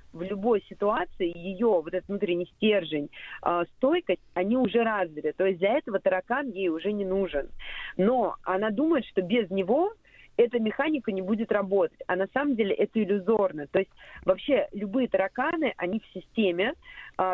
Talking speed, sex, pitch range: 165 wpm, female, 185-240 Hz